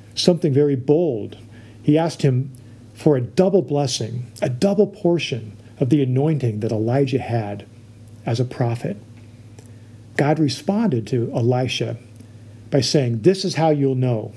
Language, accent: English, American